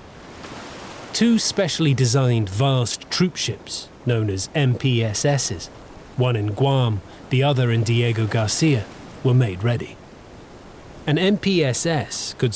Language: English